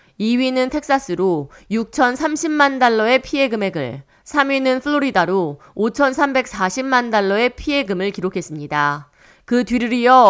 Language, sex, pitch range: Korean, female, 185-265 Hz